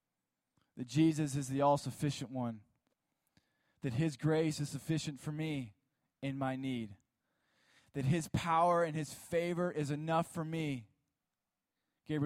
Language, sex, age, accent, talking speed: English, male, 20-39, American, 130 wpm